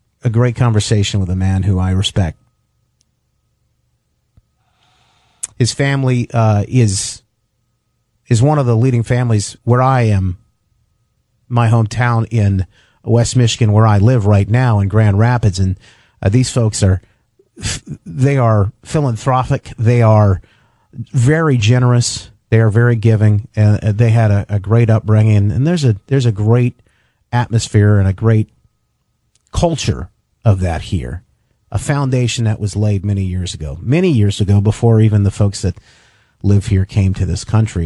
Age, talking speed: 40-59, 150 wpm